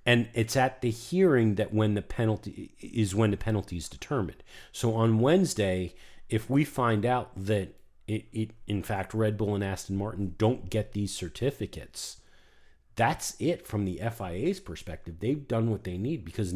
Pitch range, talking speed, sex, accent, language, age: 95-120 Hz, 175 wpm, male, American, English, 40-59